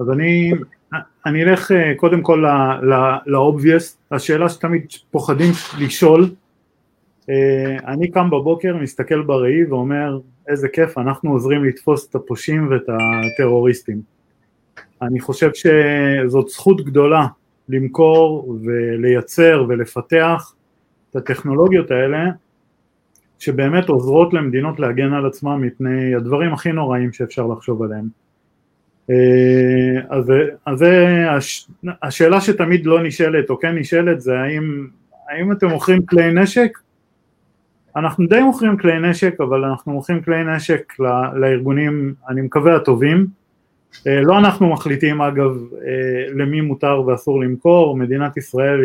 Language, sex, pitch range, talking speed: Hebrew, male, 130-165 Hz, 115 wpm